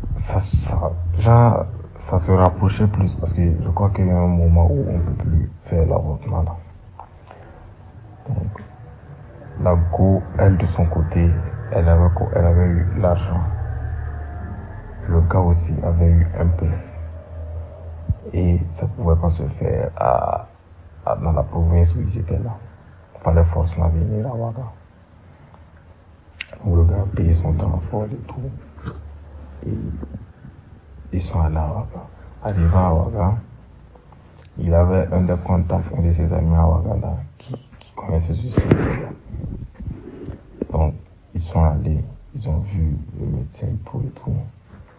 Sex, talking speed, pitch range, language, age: male, 145 wpm, 85-100 Hz, French, 60-79